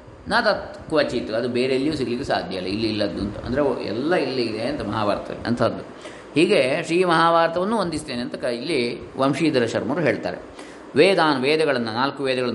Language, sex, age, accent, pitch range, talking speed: Kannada, male, 20-39, native, 115-145 Hz, 135 wpm